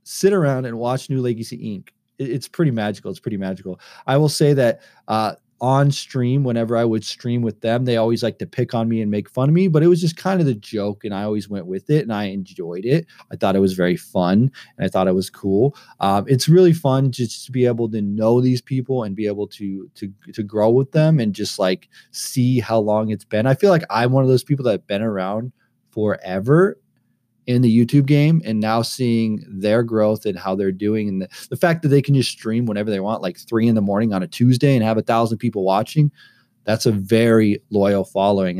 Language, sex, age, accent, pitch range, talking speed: English, male, 20-39, American, 105-135 Hz, 240 wpm